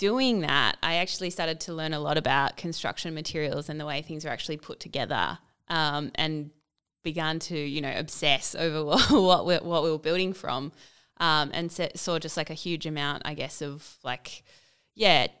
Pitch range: 150-165 Hz